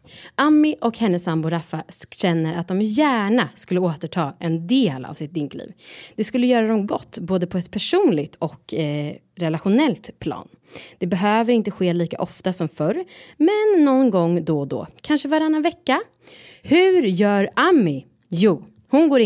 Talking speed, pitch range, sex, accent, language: 160 wpm, 160-235 Hz, female, Swedish, English